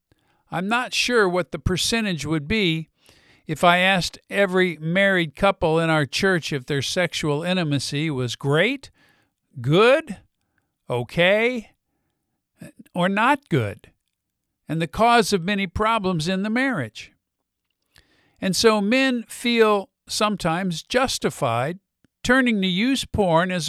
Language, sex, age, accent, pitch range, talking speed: English, male, 50-69, American, 140-195 Hz, 120 wpm